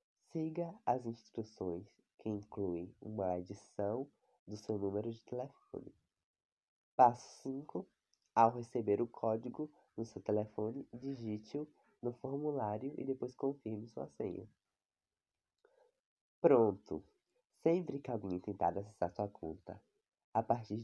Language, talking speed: Portuguese, 110 wpm